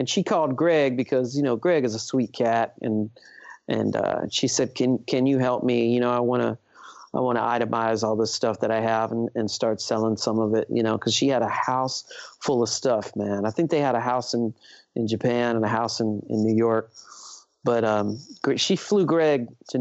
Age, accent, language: 40-59, American, English